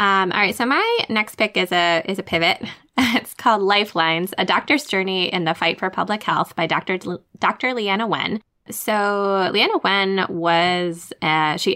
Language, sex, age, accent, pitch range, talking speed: English, female, 10-29, American, 170-215 Hz, 170 wpm